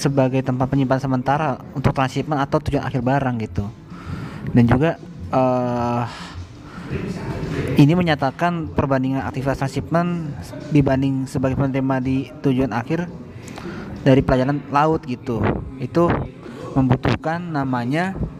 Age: 20-39